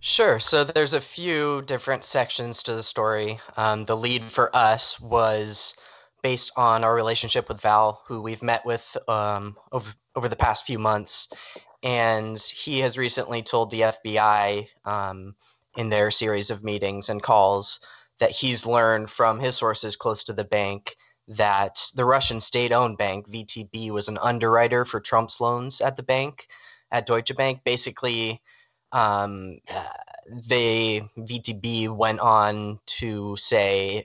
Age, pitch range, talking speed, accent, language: 20-39, 105-120 Hz, 150 wpm, American, English